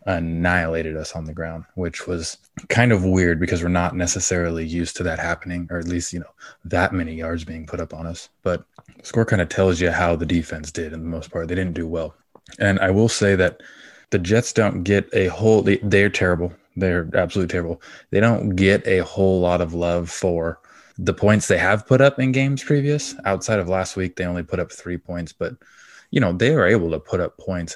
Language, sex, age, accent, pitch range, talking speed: English, male, 20-39, American, 85-95 Hz, 225 wpm